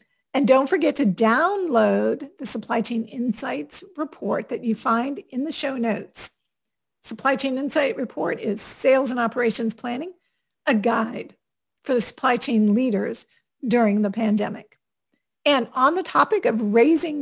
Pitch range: 225-290 Hz